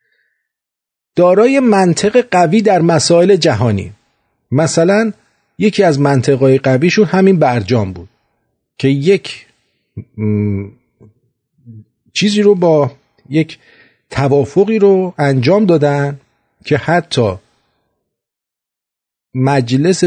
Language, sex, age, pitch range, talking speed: English, male, 50-69, 120-170 Hz, 85 wpm